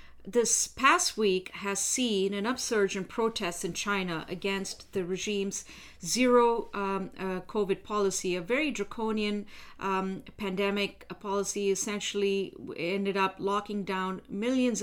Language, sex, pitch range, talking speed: English, female, 195-235 Hz, 125 wpm